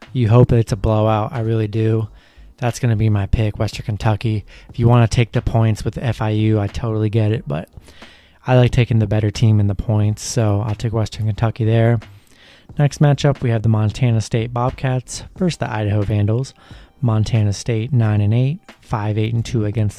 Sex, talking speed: male, 190 wpm